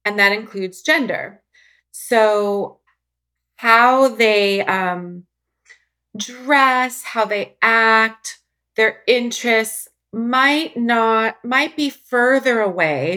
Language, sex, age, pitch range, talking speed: English, female, 30-49, 180-245 Hz, 90 wpm